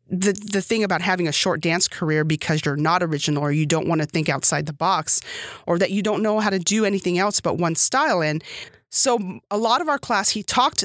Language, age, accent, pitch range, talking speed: English, 30-49, American, 160-215 Hz, 245 wpm